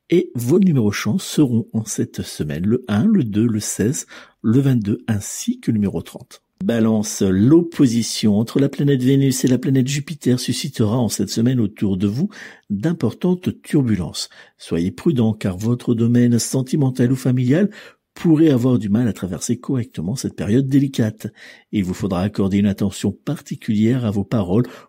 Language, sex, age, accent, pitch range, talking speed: French, male, 60-79, French, 105-140 Hz, 165 wpm